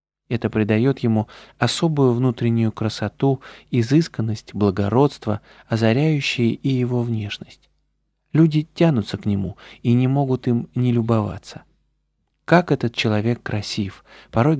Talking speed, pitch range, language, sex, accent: 110 wpm, 105-135 Hz, Russian, male, native